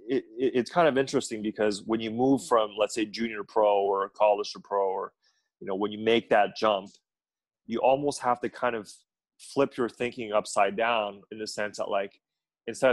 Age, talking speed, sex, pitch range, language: 30-49, 190 wpm, male, 105-130 Hz, English